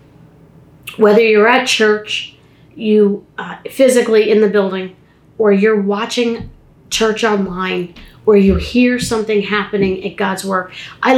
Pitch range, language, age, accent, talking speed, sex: 195-235 Hz, English, 40-59, American, 130 wpm, female